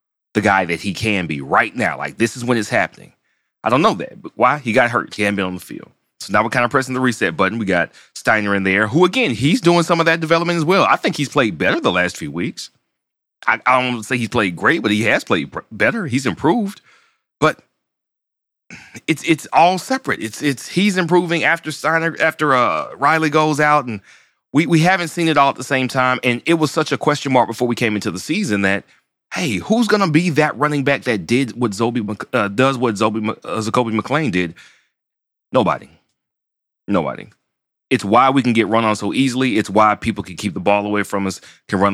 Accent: American